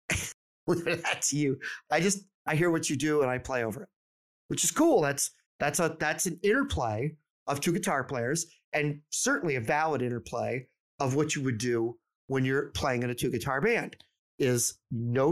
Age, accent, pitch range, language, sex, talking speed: 30-49, American, 120-160 Hz, English, male, 185 wpm